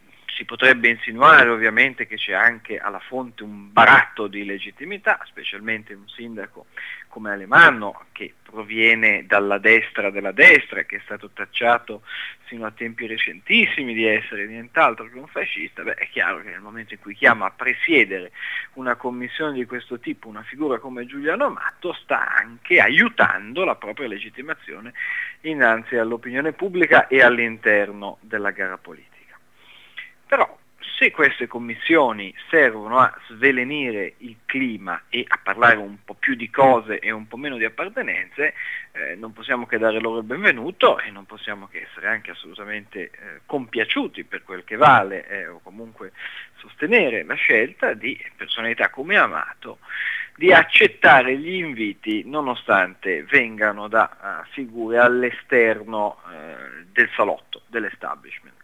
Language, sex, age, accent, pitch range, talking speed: Italian, male, 30-49, native, 105-125 Hz, 145 wpm